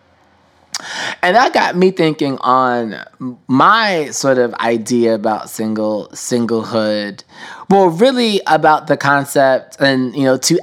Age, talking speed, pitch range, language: 20-39, 125 wpm, 115-140 Hz, English